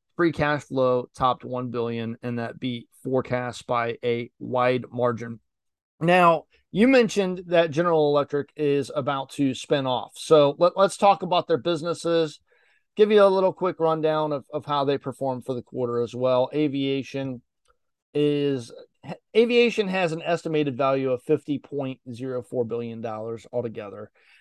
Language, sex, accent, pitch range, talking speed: English, male, American, 125-165 Hz, 155 wpm